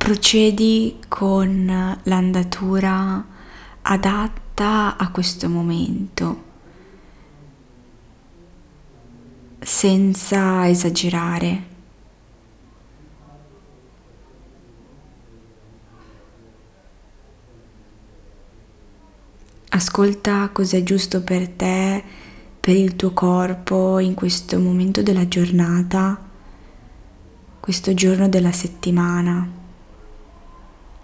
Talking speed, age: 55 wpm, 20-39